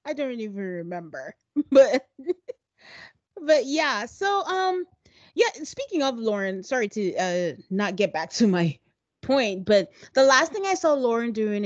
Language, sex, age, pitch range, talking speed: English, female, 30-49, 195-260 Hz, 155 wpm